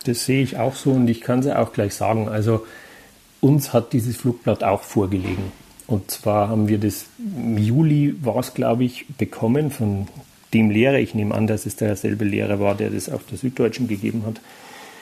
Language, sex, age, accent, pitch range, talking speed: German, male, 40-59, German, 105-120 Hz, 195 wpm